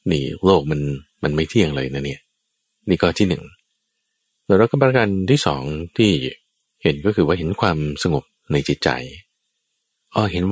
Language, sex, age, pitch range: Thai, male, 20-39, 75-115 Hz